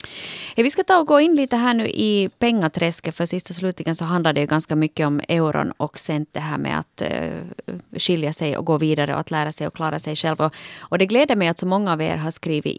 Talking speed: 260 wpm